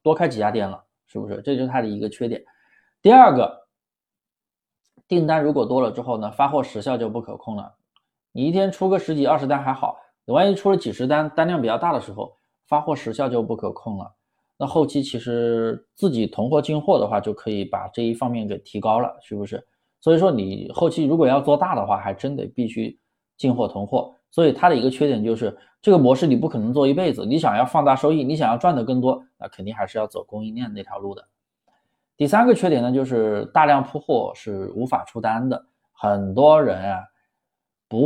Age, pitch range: 20-39, 115-160 Hz